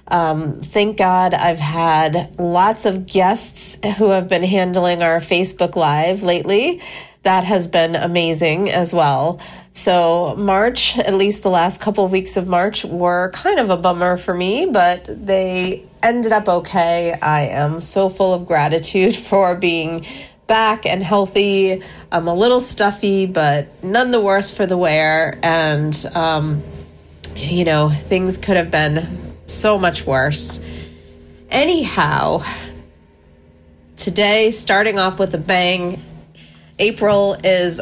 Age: 30-49